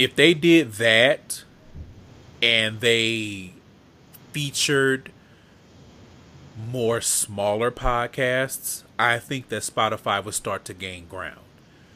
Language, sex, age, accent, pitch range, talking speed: English, male, 30-49, American, 105-130 Hz, 95 wpm